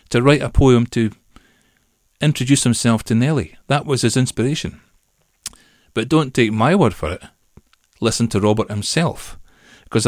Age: 40-59